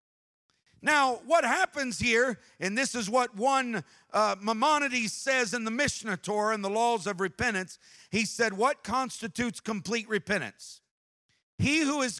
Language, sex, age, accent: English, male, 50-69, American